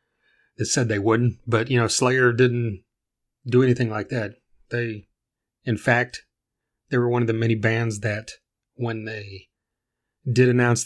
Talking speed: 155 wpm